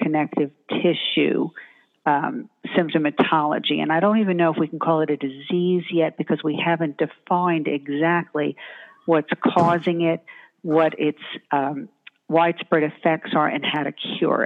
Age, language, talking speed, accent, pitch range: 50-69, English, 145 wpm, American, 150-180 Hz